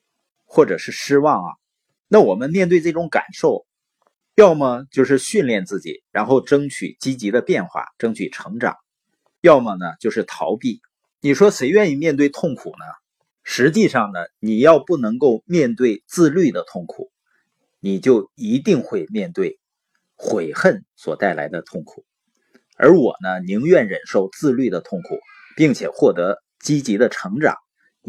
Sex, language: male, Chinese